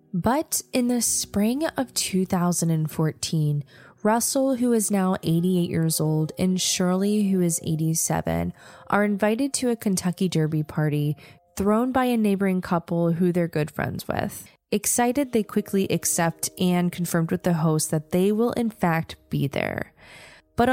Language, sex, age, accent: English, female, 20-39, American